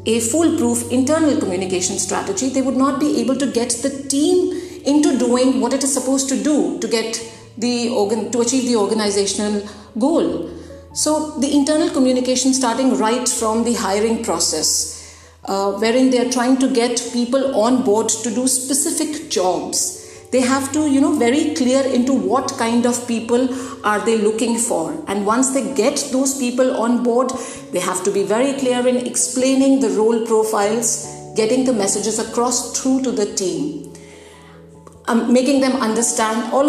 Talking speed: 170 wpm